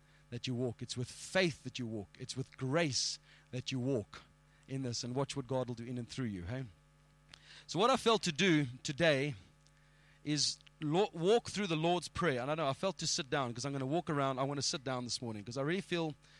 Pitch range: 135-165 Hz